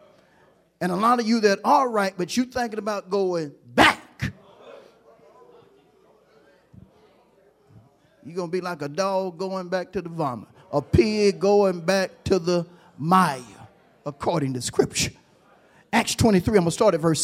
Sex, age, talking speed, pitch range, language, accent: male, 40-59, 155 wpm, 165-225 Hz, English, American